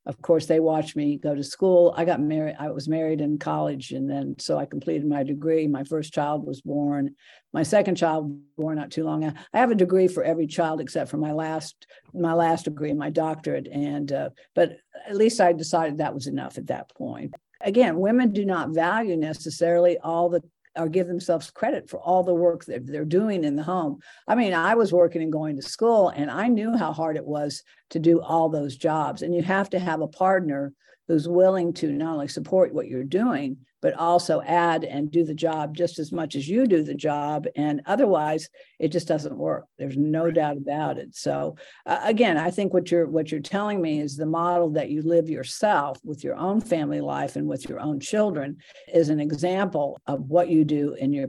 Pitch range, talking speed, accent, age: 150-180 Hz, 220 wpm, American, 60-79